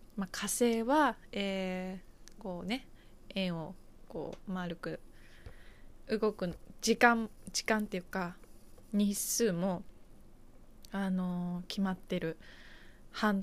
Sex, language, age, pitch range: female, Japanese, 20-39, 175-210 Hz